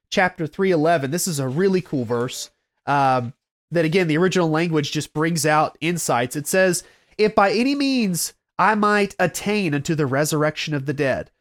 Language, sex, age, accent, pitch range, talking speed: English, male, 30-49, American, 170-235 Hz, 175 wpm